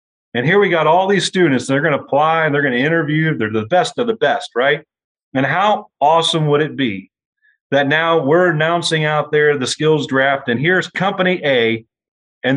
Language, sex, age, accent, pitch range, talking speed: English, male, 40-59, American, 130-170 Hz, 205 wpm